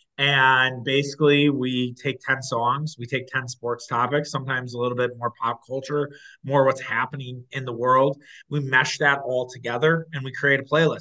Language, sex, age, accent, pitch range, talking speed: English, male, 20-39, American, 115-140 Hz, 185 wpm